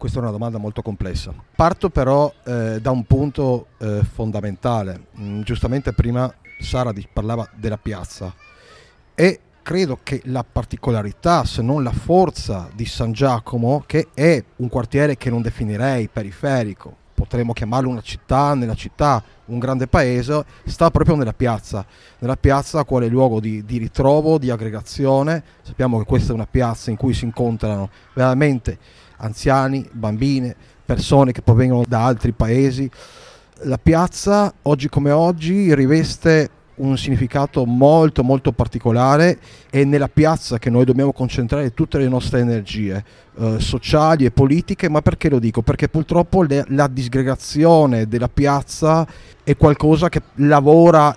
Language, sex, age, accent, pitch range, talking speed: Italian, male, 40-59, native, 115-145 Hz, 145 wpm